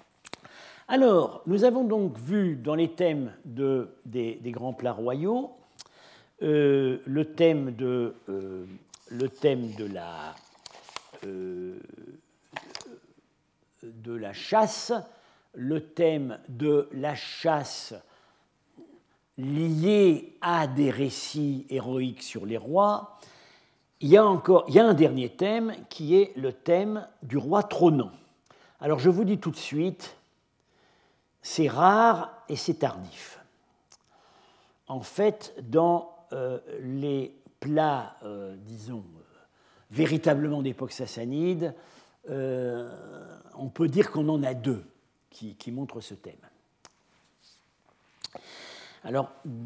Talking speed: 105 wpm